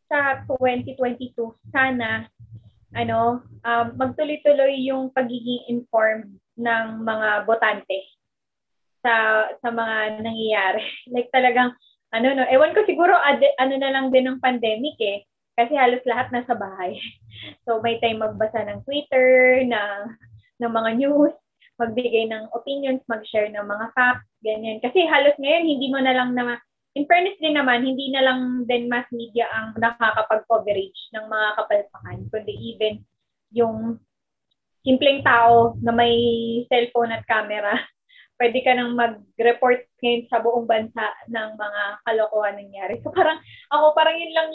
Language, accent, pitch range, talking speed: Filipino, native, 220-265 Hz, 140 wpm